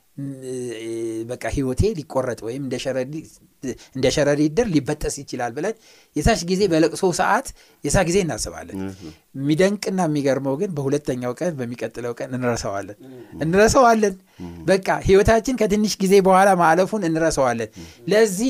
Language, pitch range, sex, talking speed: Amharic, 130-175 Hz, male, 110 wpm